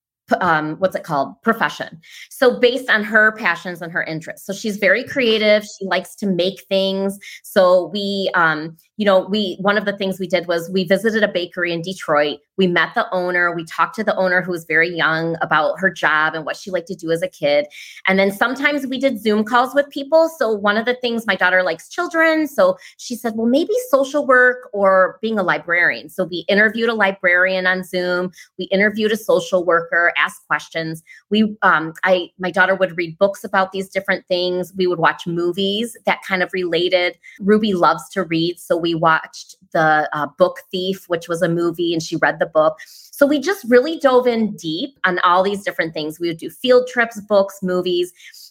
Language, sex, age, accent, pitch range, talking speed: English, female, 20-39, American, 175-220 Hz, 205 wpm